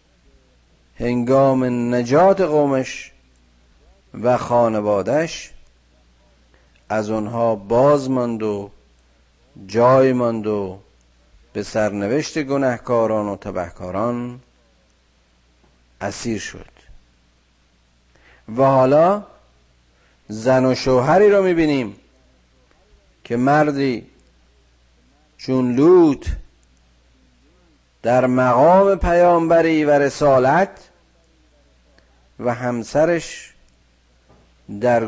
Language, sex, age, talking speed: Persian, male, 50-69, 65 wpm